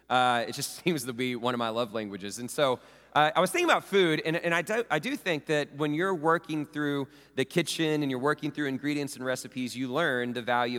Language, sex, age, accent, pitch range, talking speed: English, male, 30-49, American, 120-145 Hz, 255 wpm